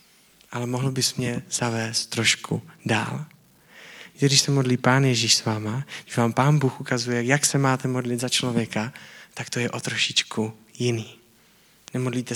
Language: Czech